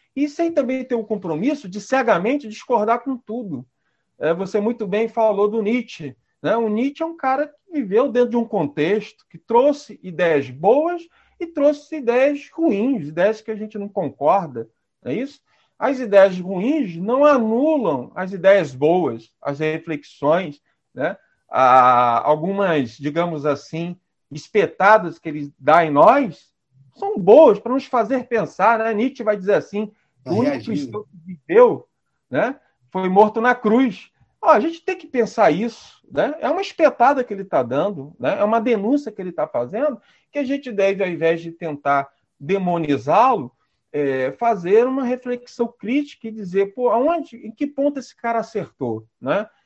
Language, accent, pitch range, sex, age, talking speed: Portuguese, Brazilian, 170-260 Hz, male, 40-59, 165 wpm